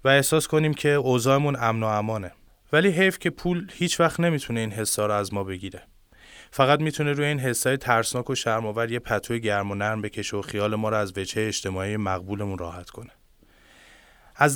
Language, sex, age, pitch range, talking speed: Persian, male, 20-39, 100-125 Hz, 185 wpm